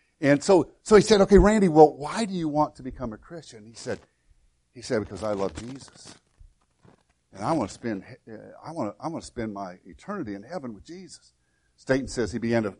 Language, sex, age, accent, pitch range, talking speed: English, male, 50-69, American, 105-150 Hz, 220 wpm